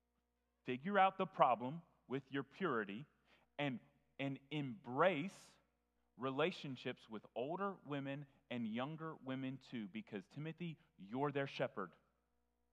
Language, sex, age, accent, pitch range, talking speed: English, male, 30-49, American, 110-160 Hz, 110 wpm